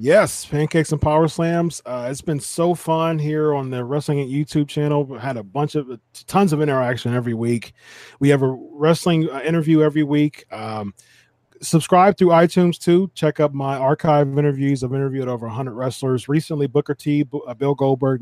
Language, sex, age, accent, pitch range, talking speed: English, male, 30-49, American, 125-155 Hz, 190 wpm